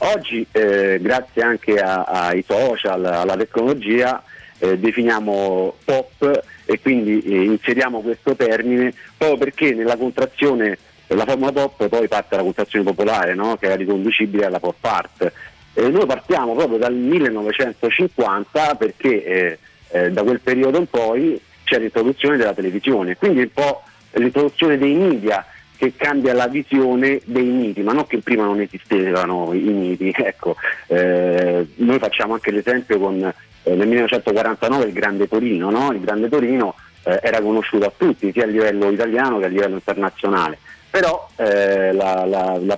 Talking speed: 150 wpm